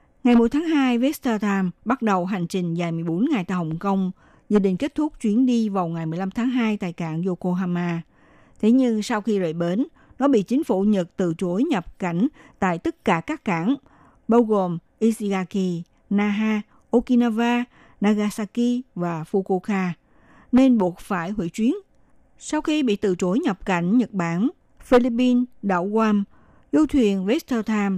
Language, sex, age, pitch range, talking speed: Vietnamese, female, 60-79, 180-240 Hz, 165 wpm